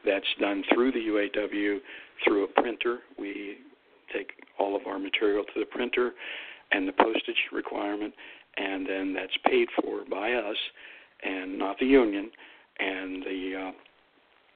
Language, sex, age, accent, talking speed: English, male, 60-79, American, 145 wpm